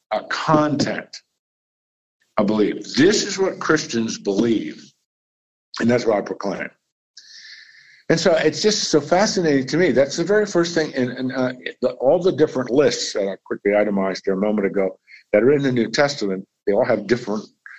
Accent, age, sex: American, 60-79, male